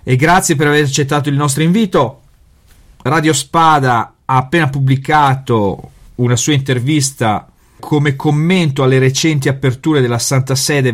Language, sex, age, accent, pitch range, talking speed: Italian, male, 40-59, native, 120-145 Hz, 130 wpm